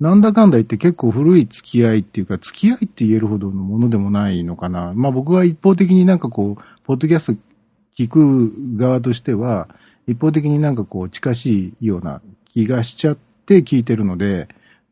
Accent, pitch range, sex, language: native, 105-155 Hz, male, Japanese